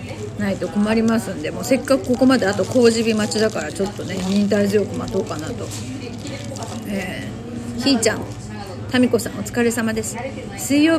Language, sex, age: Japanese, female, 40-59